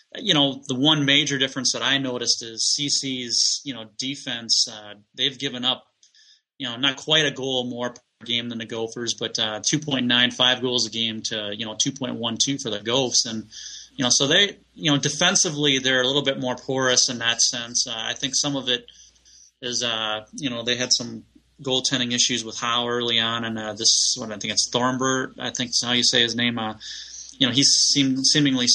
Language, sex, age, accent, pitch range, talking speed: English, male, 30-49, American, 115-130 Hz, 210 wpm